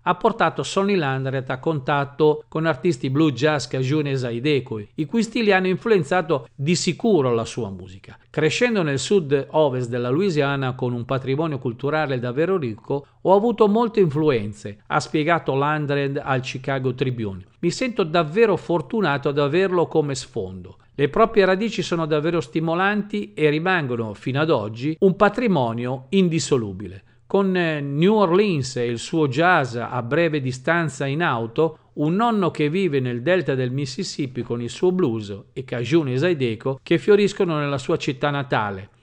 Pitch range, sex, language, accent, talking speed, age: 125-180 Hz, male, Italian, native, 155 wpm, 50-69